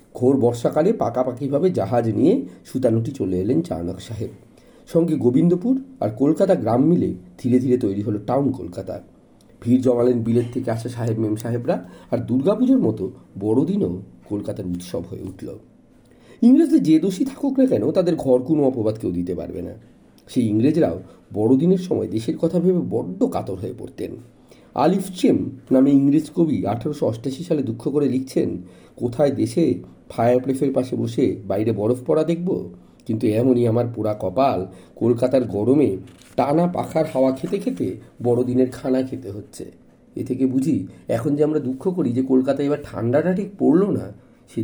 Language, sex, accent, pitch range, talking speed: Bengali, male, native, 115-165 Hz, 150 wpm